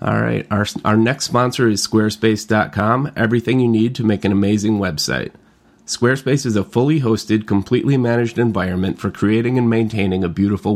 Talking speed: 165 wpm